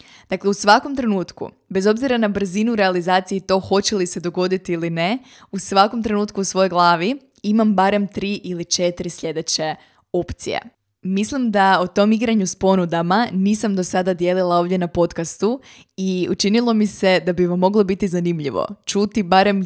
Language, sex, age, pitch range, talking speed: Croatian, female, 20-39, 180-205 Hz, 170 wpm